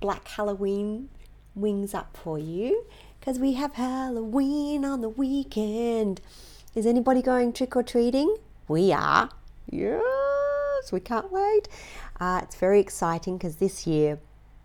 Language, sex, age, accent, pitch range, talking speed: English, female, 40-59, Australian, 160-250 Hz, 125 wpm